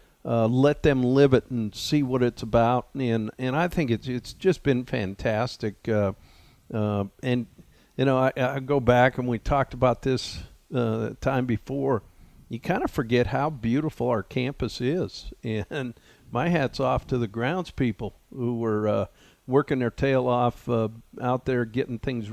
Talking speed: 175 wpm